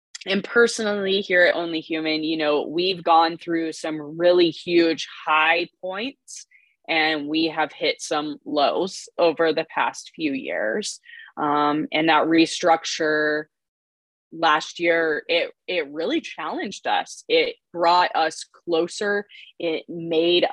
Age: 20-39